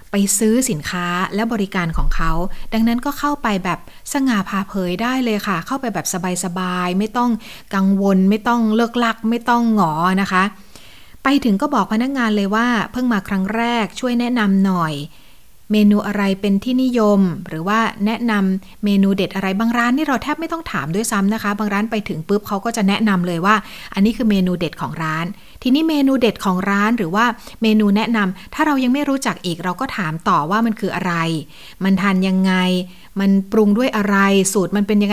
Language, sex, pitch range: Thai, female, 185-235 Hz